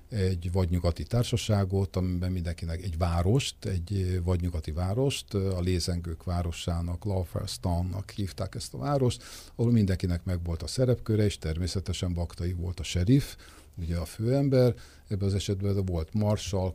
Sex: male